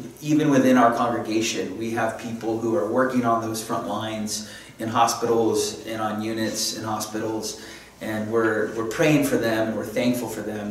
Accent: American